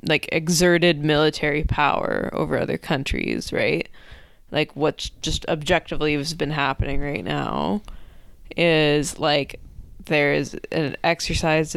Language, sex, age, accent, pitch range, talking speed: English, female, 20-39, American, 155-175 Hz, 115 wpm